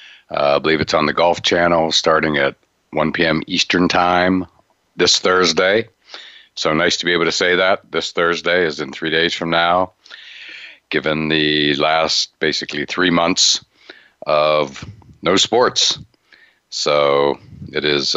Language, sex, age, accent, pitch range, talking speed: English, male, 50-69, American, 75-90 Hz, 145 wpm